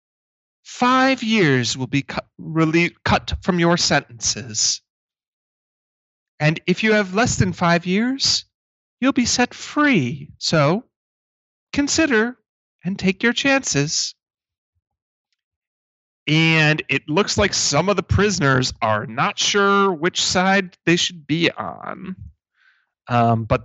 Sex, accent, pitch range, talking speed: male, American, 120-185 Hz, 115 wpm